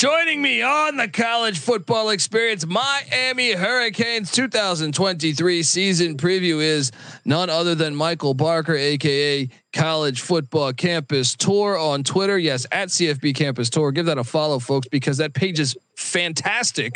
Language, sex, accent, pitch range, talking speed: English, male, American, 150-200 Hz, 140 wpm